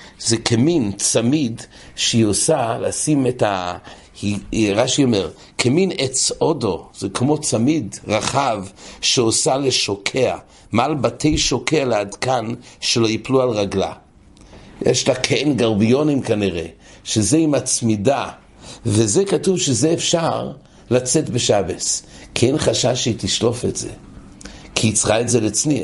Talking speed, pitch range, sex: 115 wpm, 110-150 Hz, male